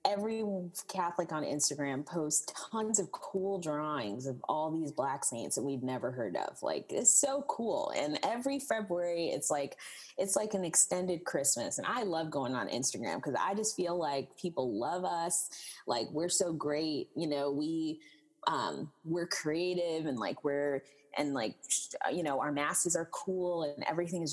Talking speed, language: 175 wpm, English